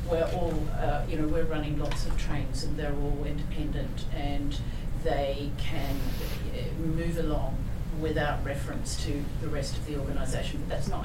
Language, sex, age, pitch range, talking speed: English, female, 40-59, 130-155 Hz, 165 wpm